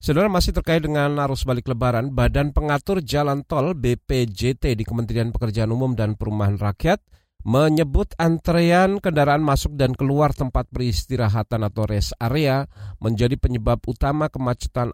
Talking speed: 135 wpm